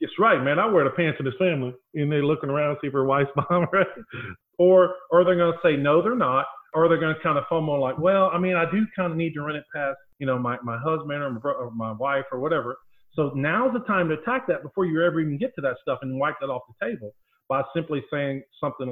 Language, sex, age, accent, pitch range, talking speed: English, male, 40-59, American, 130-160 Hz, 275 wpm